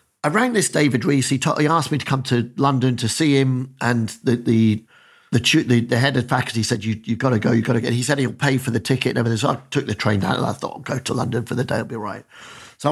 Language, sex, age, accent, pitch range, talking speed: English, male, 50-69, British, 125-160 Hz, 300 wpm